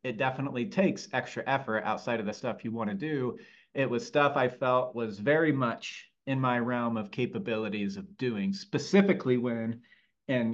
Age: 40-59